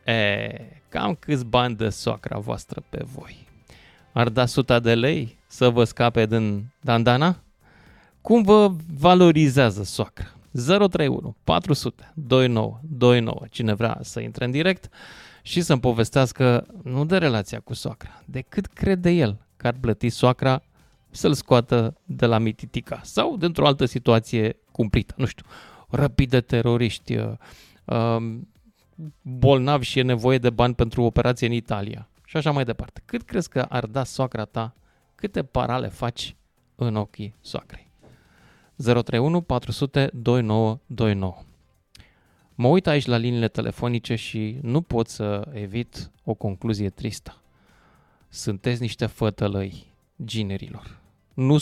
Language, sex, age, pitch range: Romanian, male, 20-39, 110-140 Hz